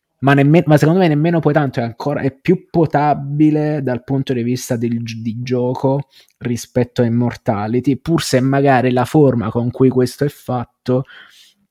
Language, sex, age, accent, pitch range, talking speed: Italian, male, 20-39, native, 115-135 Hz, 170 wpm